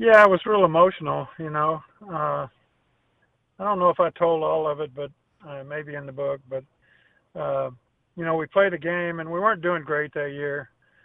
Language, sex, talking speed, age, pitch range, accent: English, male, 205 wpm, 50-69, 140-170 Hz, American